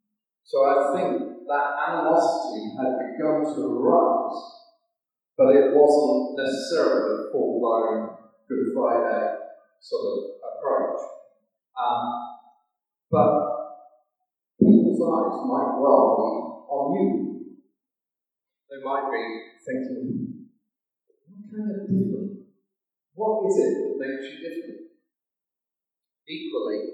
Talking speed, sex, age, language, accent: 100 wpm, male, 40-59, English, British